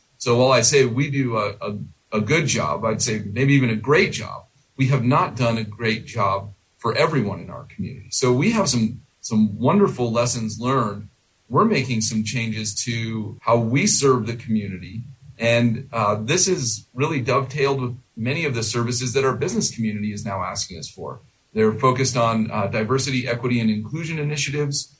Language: English